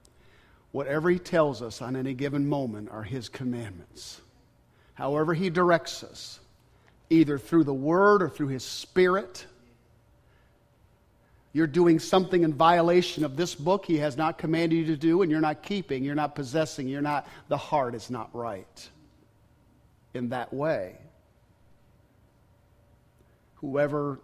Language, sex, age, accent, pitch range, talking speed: English, male, 50-69, American, 115-165 Hz, 140 wpm